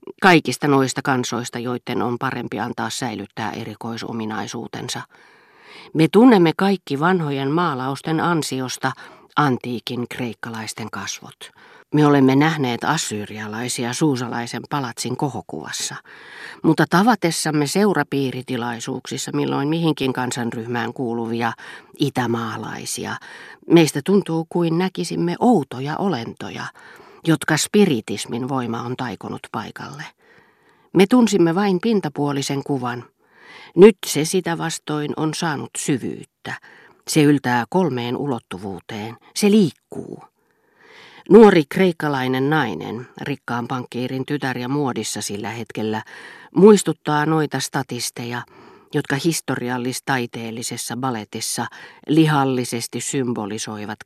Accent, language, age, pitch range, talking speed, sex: native, Finnish, 40-59, 120-160 Hz, 90 wpm, female